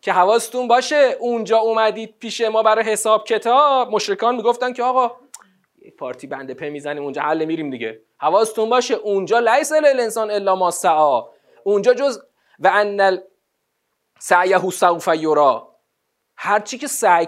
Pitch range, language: 185-245 Hz, Persian